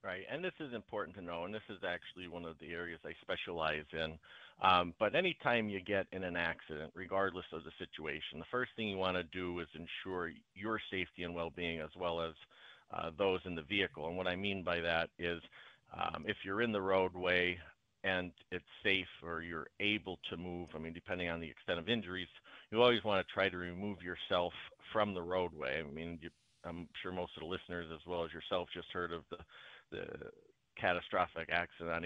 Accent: American